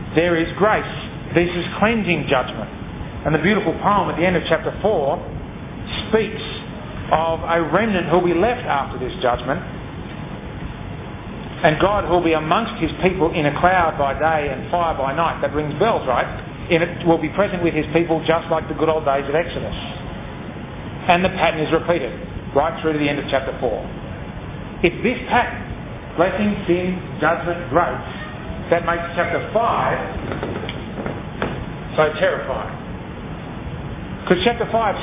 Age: 40-59